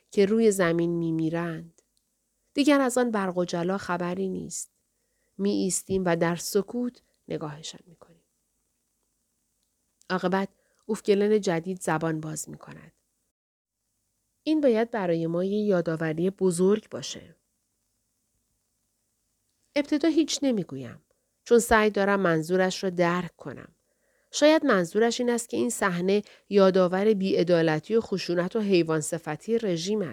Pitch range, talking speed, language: 165-215 Hz, 115 wpm, Persian